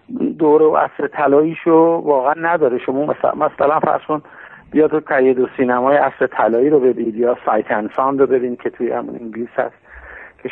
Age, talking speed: 50-69, 165 wpm